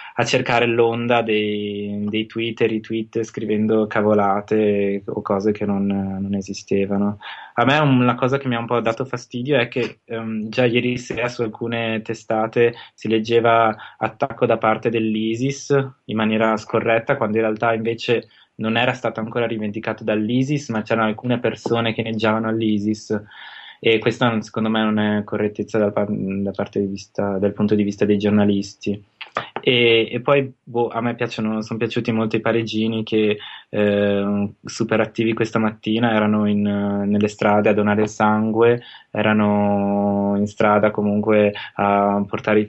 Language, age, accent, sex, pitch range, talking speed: Italian, 20-39, native, male, 105-115 Hz, 160 wpm